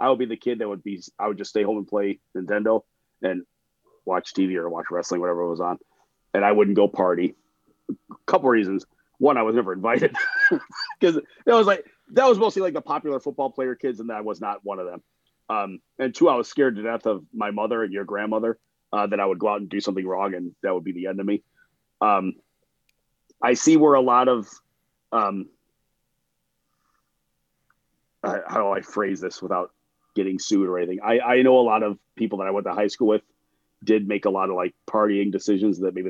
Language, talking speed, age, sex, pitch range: English, 225 wpm, 30-49, male, 100-135 Hz